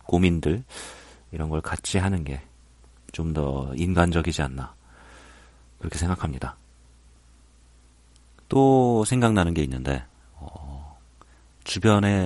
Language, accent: Korean, native